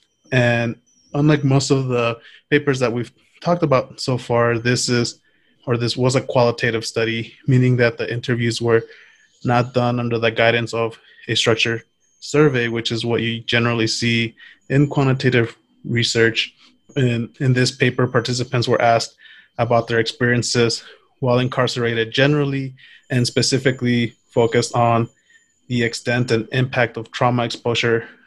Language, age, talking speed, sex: English, 20-39, 140 wpm, male